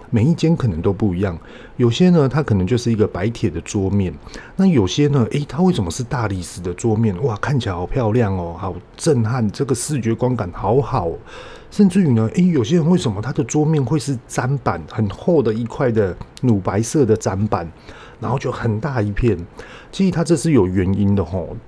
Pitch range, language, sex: 100-135 Hz, Chinese, male